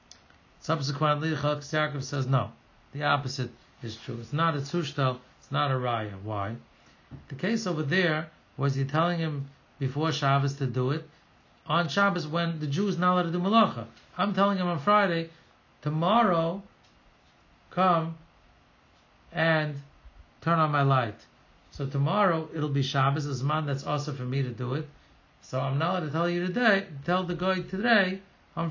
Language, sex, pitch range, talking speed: English, male, 130-170 Hz, 165 wpm